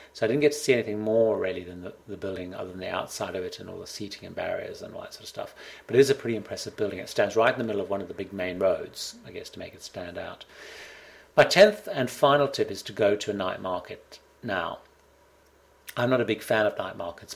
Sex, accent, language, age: male, British, English, 40-59